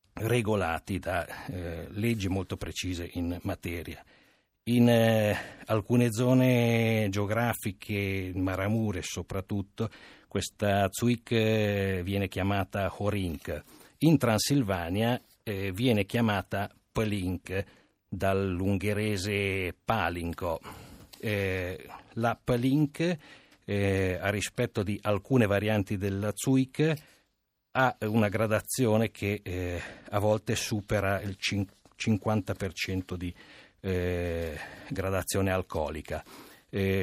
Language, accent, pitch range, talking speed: Italian, native, 95-110 Hz, 90 wpm